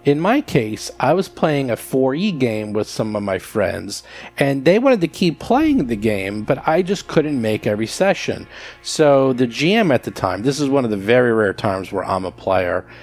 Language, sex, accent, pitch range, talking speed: English, male, American, 105-140 Hz, 215 wpm